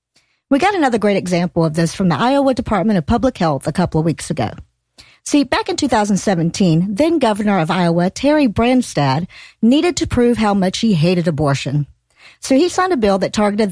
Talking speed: 190 wpm